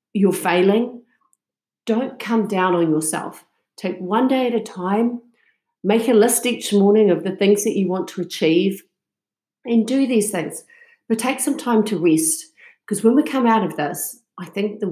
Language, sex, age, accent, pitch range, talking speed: English, female, 50-69, Australian, 175-230 Hz, 185 wpm